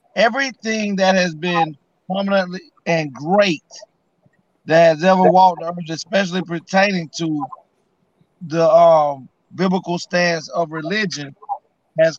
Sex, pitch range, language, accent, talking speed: male, 165-200 Hz, English, American, 110 wpm